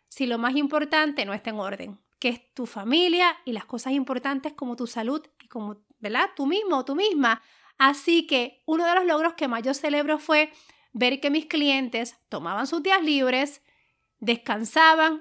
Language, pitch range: Spanish, 245-315 Hz